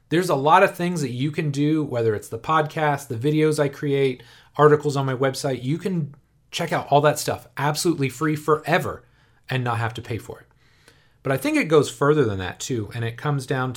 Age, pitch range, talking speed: 30-49, 115-145 Hz, 220 wpm